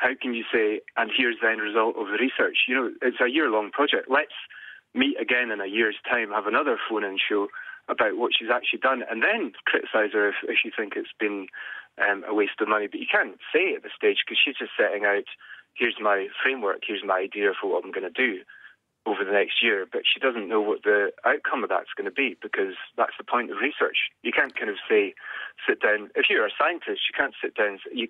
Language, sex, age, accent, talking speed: English, male, 30-49, British, 235 wpm